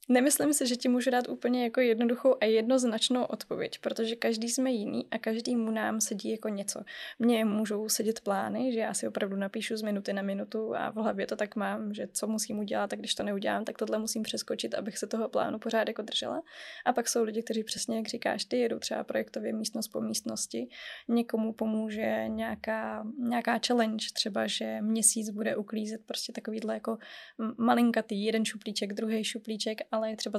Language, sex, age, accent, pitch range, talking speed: Czech, female, 20-39, native, 210-235 Hz, 190 wpm